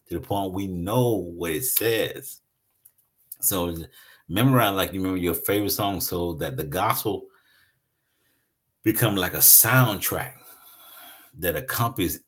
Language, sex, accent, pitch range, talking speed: English, male, American, 100-130 Hz, 125 wpm